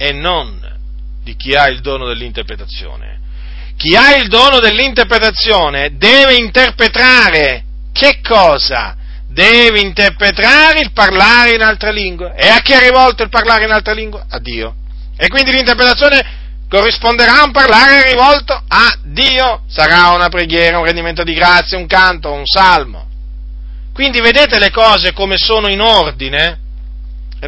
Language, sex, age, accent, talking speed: Italian, male, 40-59, native, 145 wpm